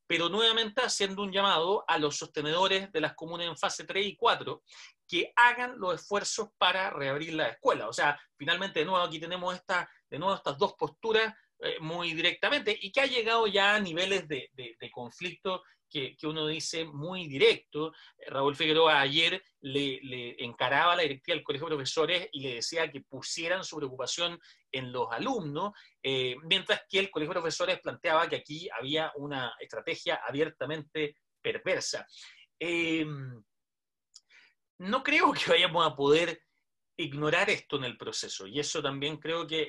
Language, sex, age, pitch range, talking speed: Spanish, male, 30-49, 145-195 Hz, 170 wpm